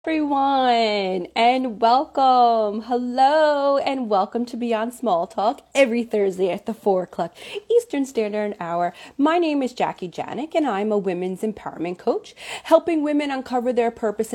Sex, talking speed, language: female, 145 wpm, English